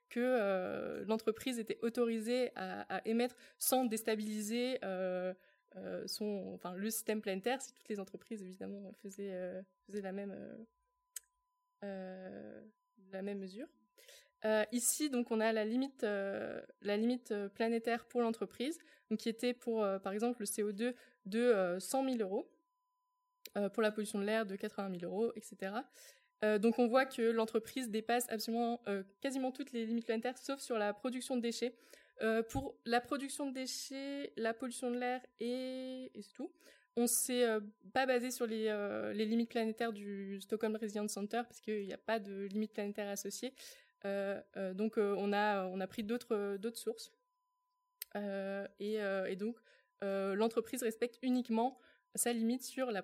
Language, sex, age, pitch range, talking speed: French, female, 20-39, 205-250 Hz, 170 wpm